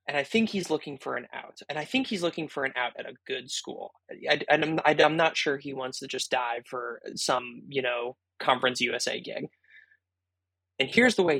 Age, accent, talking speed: 20-39, American, 215 wpm